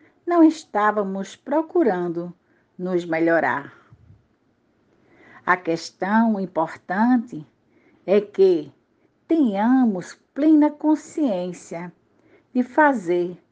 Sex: female